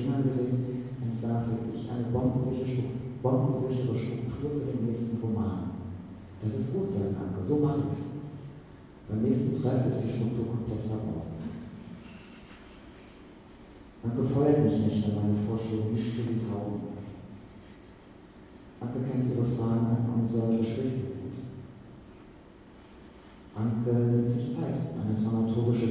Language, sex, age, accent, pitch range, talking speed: German, male, 40-59, German, 105-125 Hz, 125 wpm